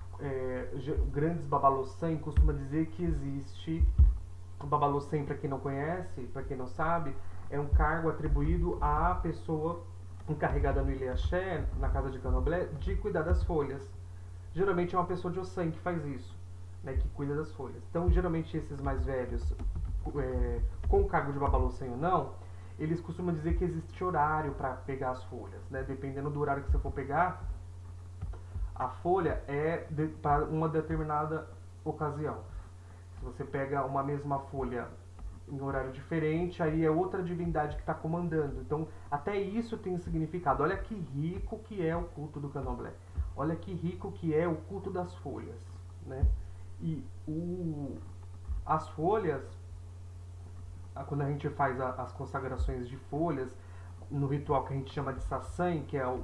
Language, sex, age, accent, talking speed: Portuguese, male, 30-49, Brazilian, 160 wpm